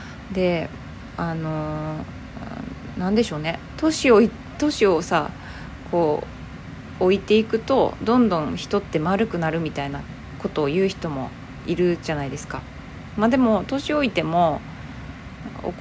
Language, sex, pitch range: Japanese, female, 160-215 Hz